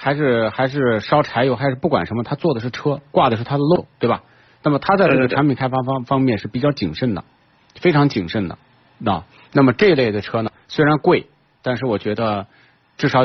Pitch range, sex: 110-145 Hz, male